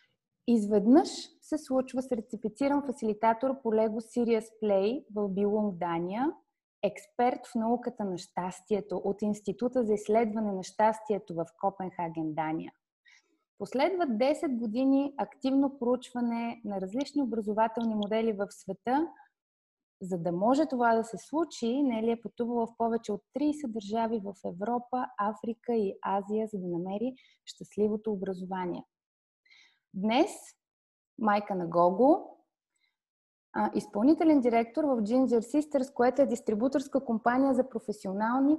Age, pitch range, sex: 20-39, 205-265 Hz, female